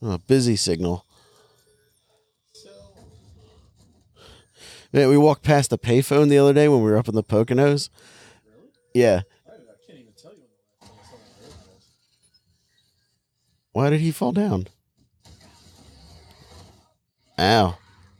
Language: English